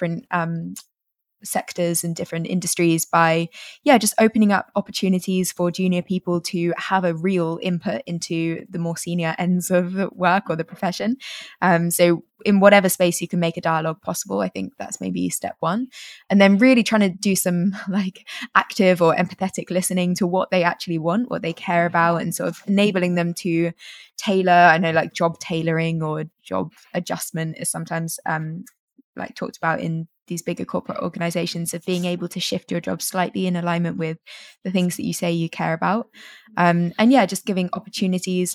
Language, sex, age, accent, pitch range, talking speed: English, female, 20-39, British, 170-195 Hz, 185 wpm